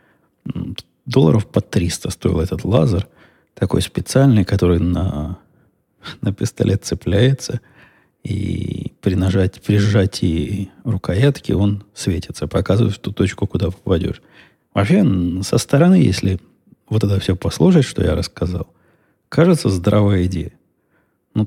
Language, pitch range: Russian, 95-120 Hz